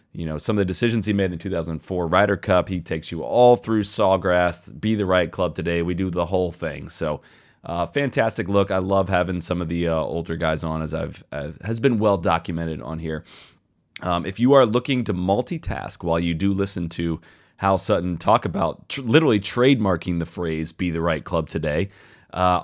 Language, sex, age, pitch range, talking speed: English, male, 30-49, 85-105 Hz, 205 wpm